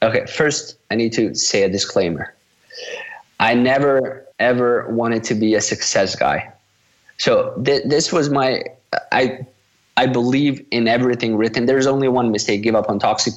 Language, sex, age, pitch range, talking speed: English, male, 20-39, 105-125 Hz, 155 wpm